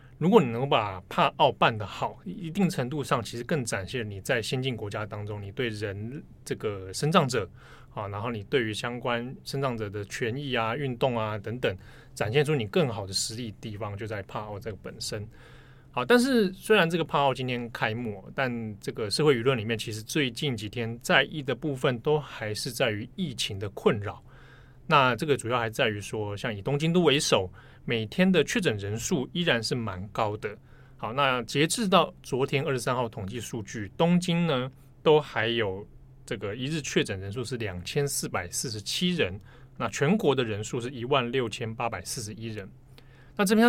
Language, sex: Chinese, male